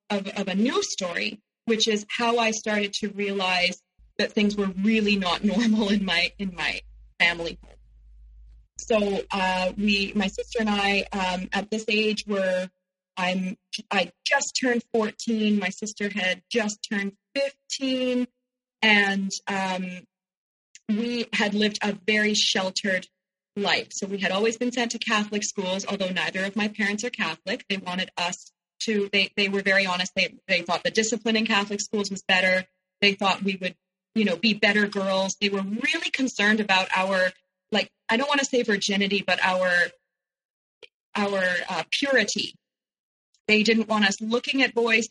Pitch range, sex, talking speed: 185-220 Hz, female, 170 wpm